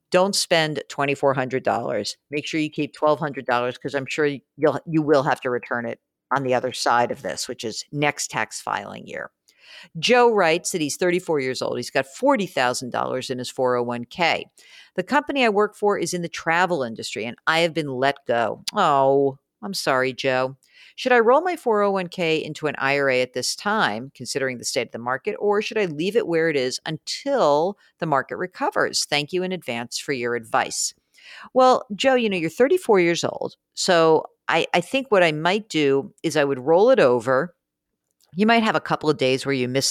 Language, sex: English, female